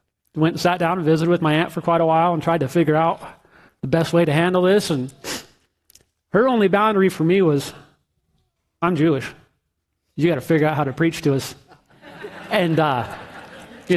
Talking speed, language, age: 200 wpm, English, 40-59